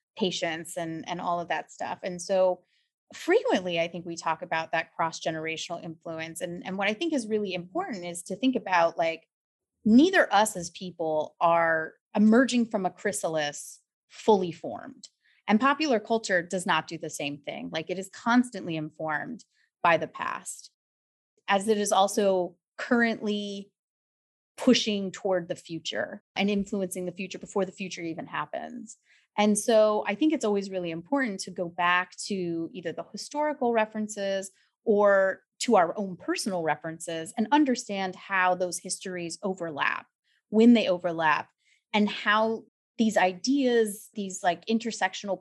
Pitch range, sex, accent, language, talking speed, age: 170-215 Hz, female, American, English, 150 wpm, 30-49